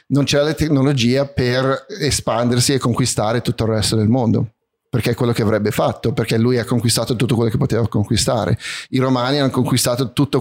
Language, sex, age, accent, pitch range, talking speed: Italian, male, 30-49, native, 115-140 Hz, 190 wpm